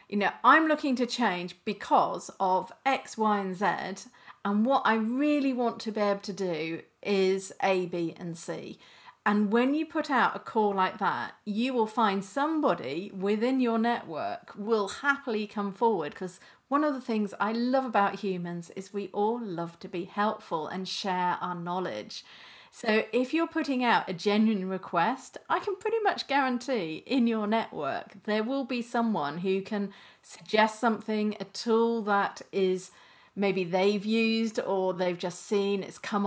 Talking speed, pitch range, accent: 170 wpm, 185-230 Hz, British